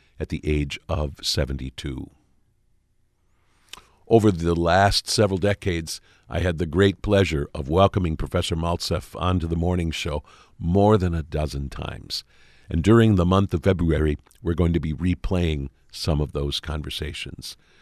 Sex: male